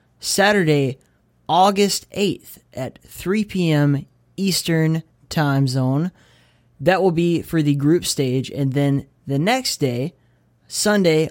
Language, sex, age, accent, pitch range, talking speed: English, male, 20-39, American, 125-155 Hz, 115 wpm